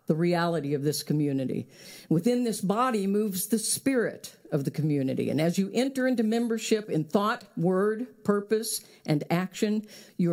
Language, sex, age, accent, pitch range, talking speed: English, female, 50-69, American, 160-210 Hz, 155 wpm